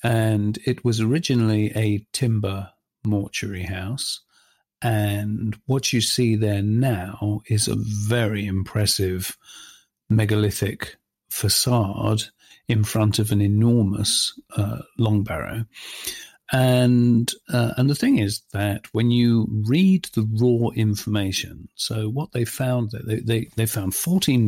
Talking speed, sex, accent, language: 125 wpm, male, British, English